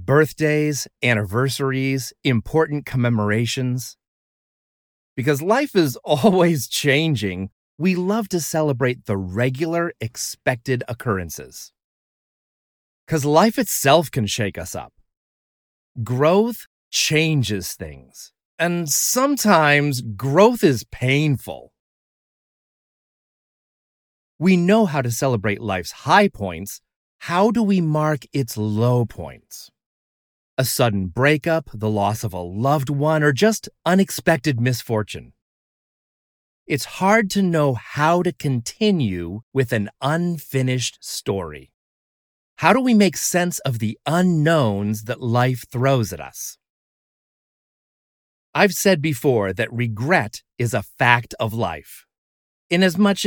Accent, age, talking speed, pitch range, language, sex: American, 40-59, 105 wpm, 110-165 Hz, English, male